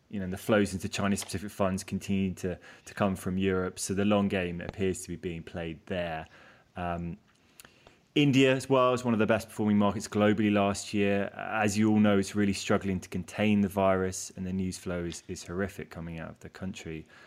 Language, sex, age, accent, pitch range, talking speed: English, male, 20-39, British, 95-105 Hz, 205 wpm